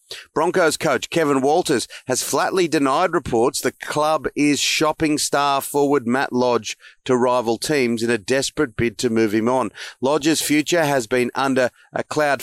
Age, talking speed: 40-59, 165 wpm